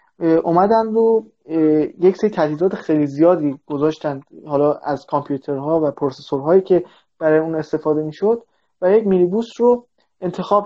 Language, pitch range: Persian, 145-190 Hz